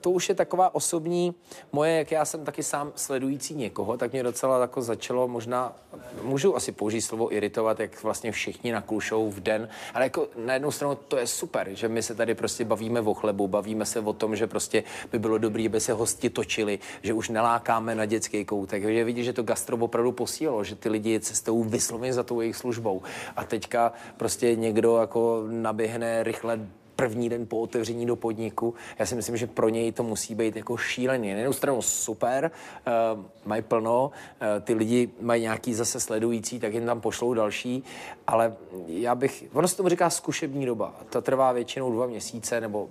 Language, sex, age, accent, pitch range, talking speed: Czech, male, 30-49, native, 110-125 Hz, 195 wpm